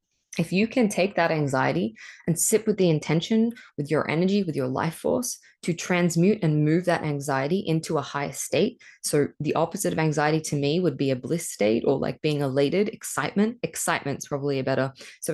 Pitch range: 150-185 Hz